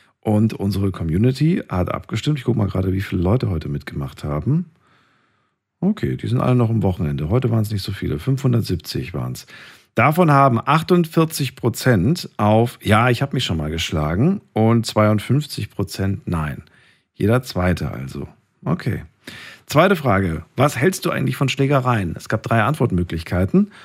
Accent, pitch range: German, 95-135 Hz